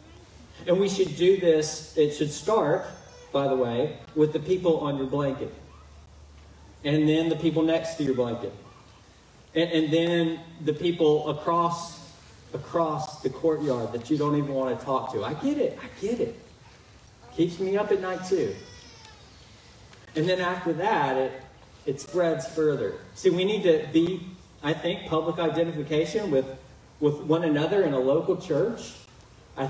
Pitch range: 130-170 Hz